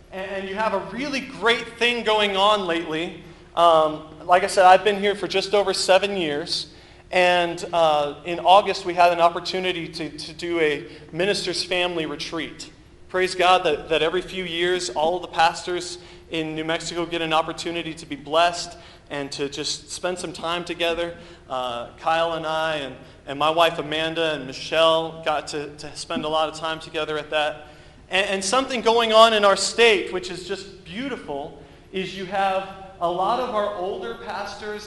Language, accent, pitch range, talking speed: English, American, 160-195 Hz, 180 wpm